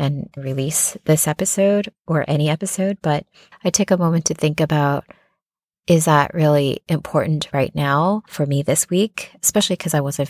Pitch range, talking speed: 145-180 Hz, 170 wpm